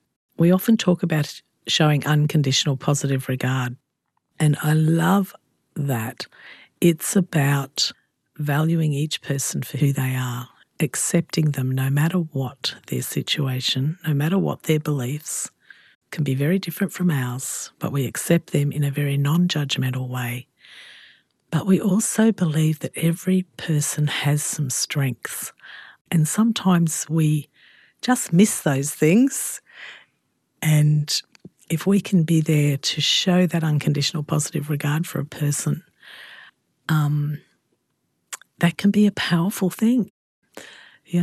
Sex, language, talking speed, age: female, English, 130 wpm, 50-69